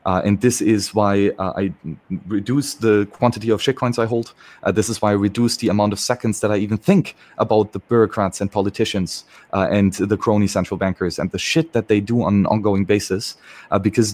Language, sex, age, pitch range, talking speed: English, male, 30-49, 100-125 Hz, 215 wpm